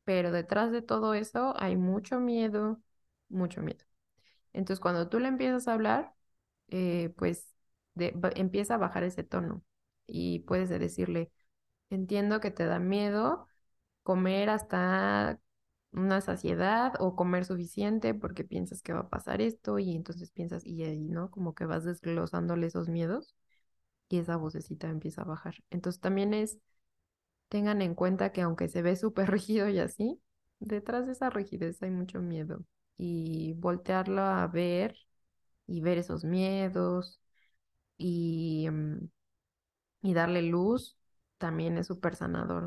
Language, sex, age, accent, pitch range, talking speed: Spanish, female, 20-39, Mexican, 165-195 Hz, 140 wpm